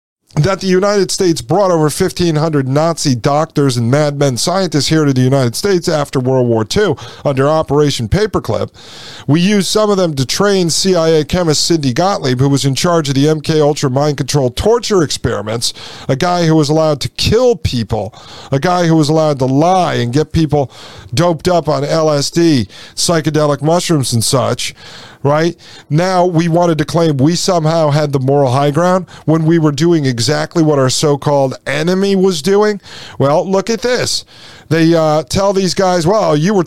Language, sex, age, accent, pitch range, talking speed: English, male, 50-69, American, 140-180 Hz, 175 wpm